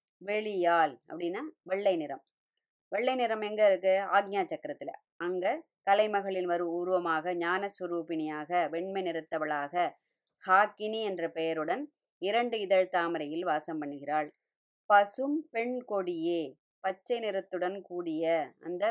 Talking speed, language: 100 wpm, Tamil